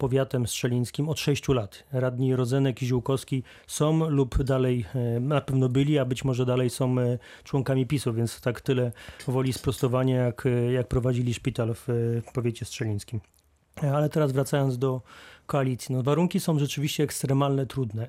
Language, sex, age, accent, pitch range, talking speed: Polish, male, 30-49, native, 125-140 Hz, 145 wpm